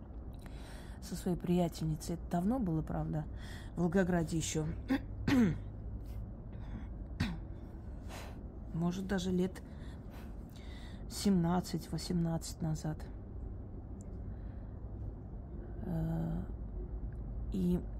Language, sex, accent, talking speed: Russian, female, native, 55 wpm